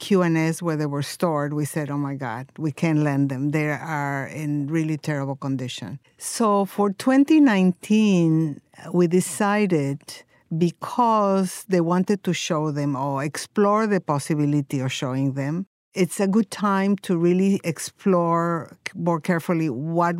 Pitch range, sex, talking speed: 155-190 Hz, female, 145 wpm